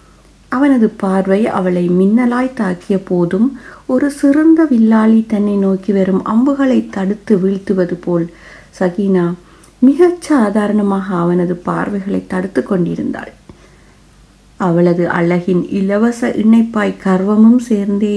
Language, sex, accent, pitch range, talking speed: Tamil, female, native, 185-230 Hz, 95 wpm